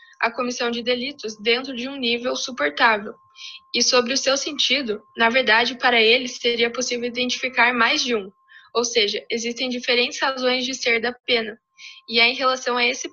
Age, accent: 10-29, Brazilian